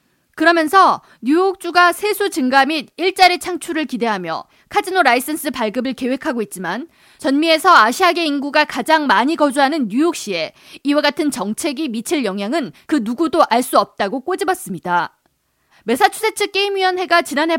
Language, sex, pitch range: Korean, female, 255-350 Hz